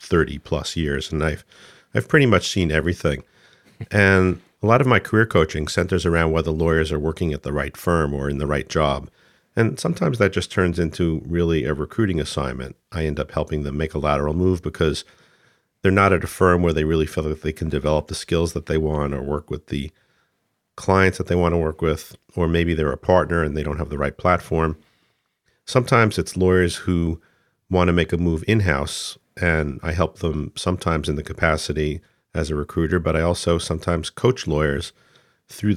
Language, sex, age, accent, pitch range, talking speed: English, male, 50-69, American, 75-90 Hz, 205 wpm